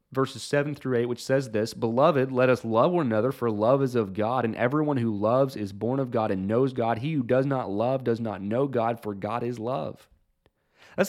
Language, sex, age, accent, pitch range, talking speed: English, male, 30-49, American, 105-140 Hz, 235 wpm